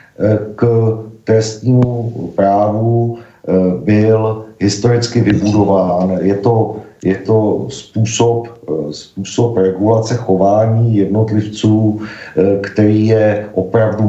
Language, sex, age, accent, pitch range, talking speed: Czech, male, 50-69, native, 100-120 Hz, 70 wpm